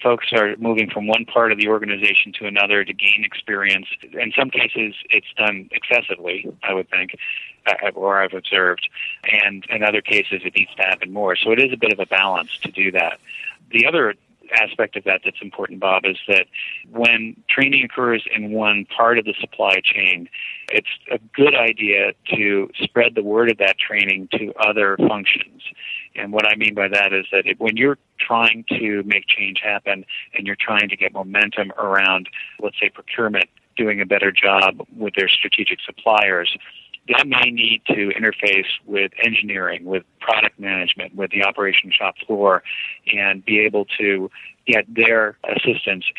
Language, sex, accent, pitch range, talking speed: English, male, American, 95-110 Hz, 175 wpm